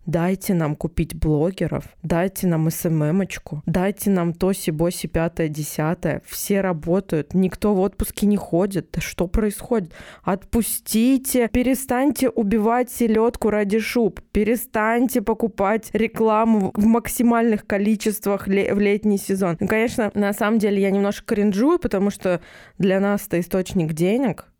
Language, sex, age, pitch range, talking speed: Russian, female, 20-39, 170-220 Hz, 125 wpm